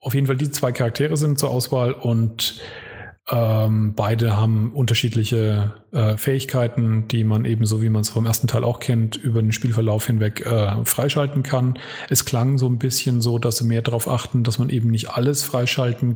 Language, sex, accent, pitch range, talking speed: German, male, German, 110-125 Hz, 195 wpm